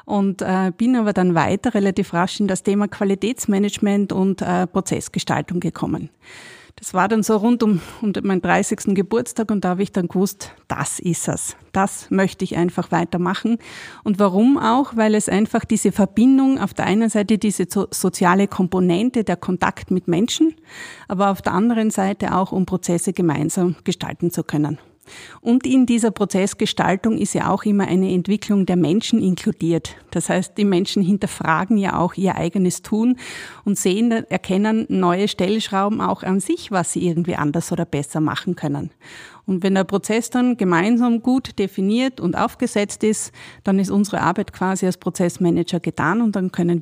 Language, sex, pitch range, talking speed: German, female, 175-215 Hz, 165 wpm